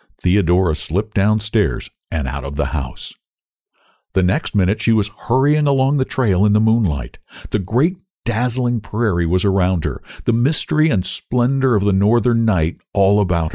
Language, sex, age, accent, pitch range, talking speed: English, male, 60-79, American, 80-115 Hz, 165 wpm